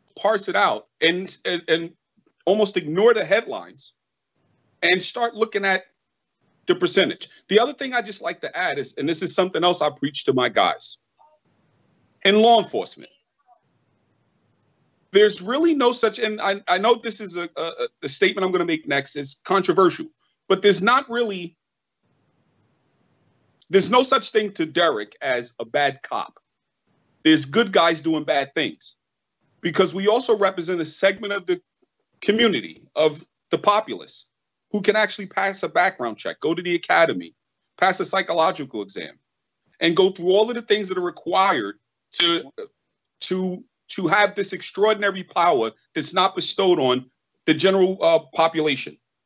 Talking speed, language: 160 wpm, English